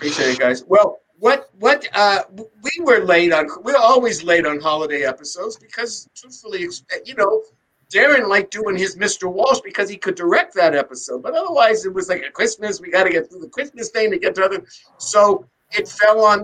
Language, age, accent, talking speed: English, 50-69, American, 210 wpm